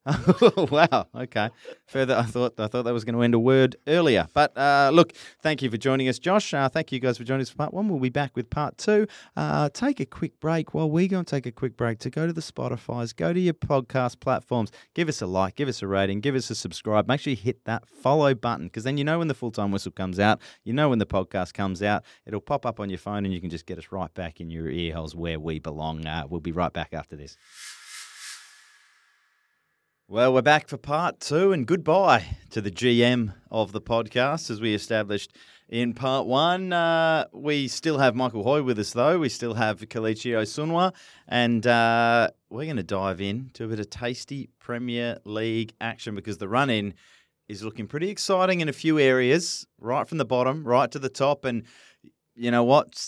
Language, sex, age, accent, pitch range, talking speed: English, male, 30-49, Australian, 105-140 Hz, 230 wpm